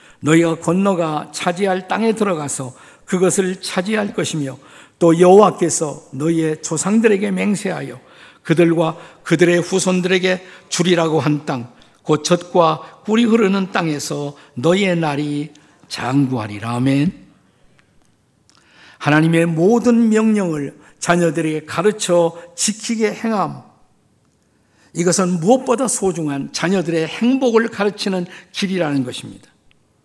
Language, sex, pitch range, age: Korean, male, 140-185 Hz, 50-69